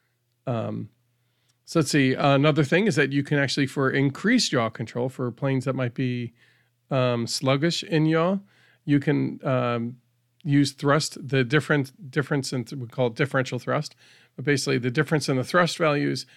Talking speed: 175 wpm